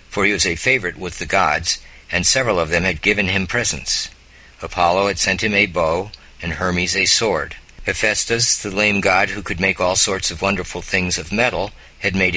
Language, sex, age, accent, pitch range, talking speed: English, male, 50-69, American, 85-105 Hz, 205 wpm